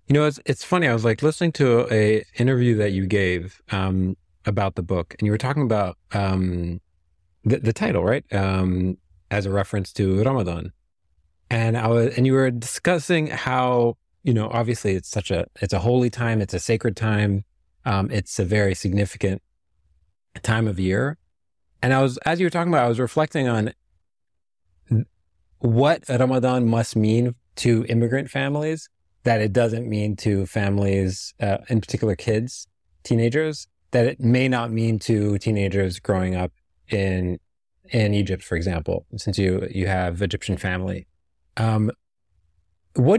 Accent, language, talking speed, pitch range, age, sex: American, English, 165 wpm, 95-120 Hz, 30-49, male